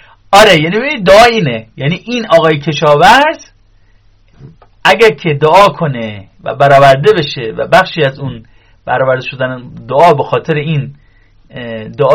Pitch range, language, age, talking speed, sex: 120-185 Hz, Persian, 40-59, 130 wpm, male